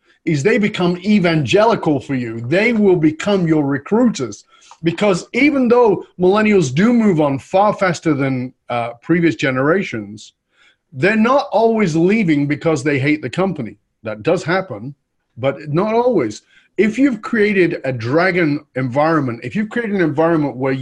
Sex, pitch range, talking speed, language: male, 125-175 Hz, 145 wpm, English